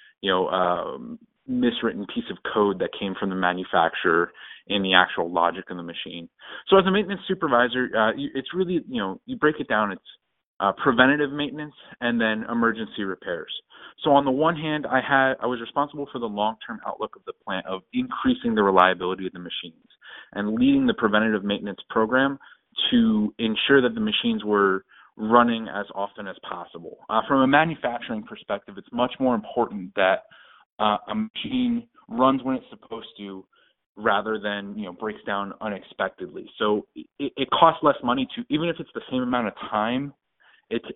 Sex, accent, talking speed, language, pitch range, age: male, American, 180 wpm, English, 105-155 Hz, 30-49